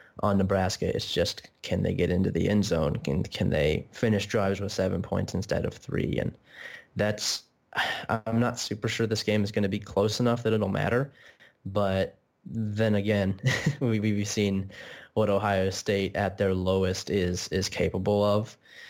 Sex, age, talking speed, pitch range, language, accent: male, 20-39, 170 wpm, 95-110 Hz, English, American